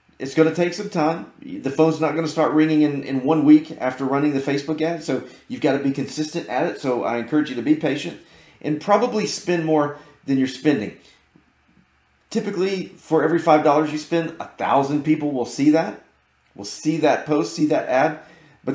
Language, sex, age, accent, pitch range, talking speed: English, male, 30-49, American, 120-155 Hz, 210 wpm